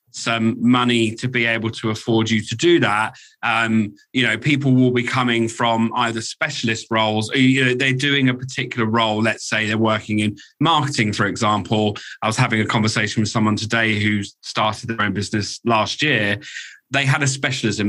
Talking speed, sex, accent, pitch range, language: 190 wpm, male, British, 110-130 Hz, English